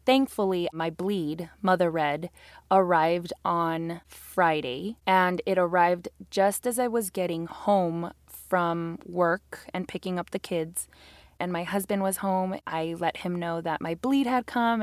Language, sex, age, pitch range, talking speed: English, female, 20-39, 175-205 Hz, 155 wpm